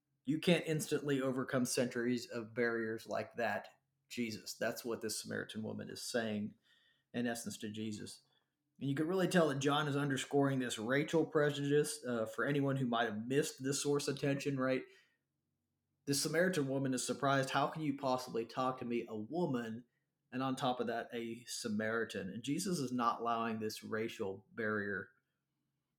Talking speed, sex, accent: 170 wpm, male, American